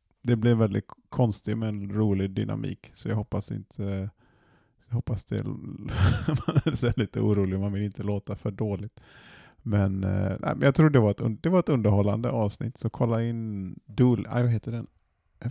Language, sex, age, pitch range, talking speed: Swedish, male, 30-49, 105-130 Hz, 175 wpm